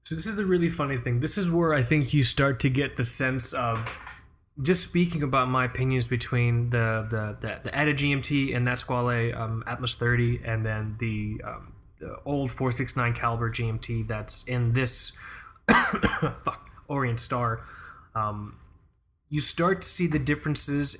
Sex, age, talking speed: male, 20-39, 175 wpm